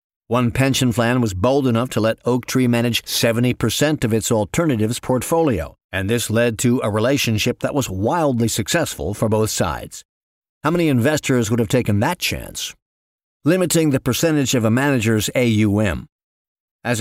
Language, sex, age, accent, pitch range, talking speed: English, male, 50-69, American, 110-140 Hz, 160 wpm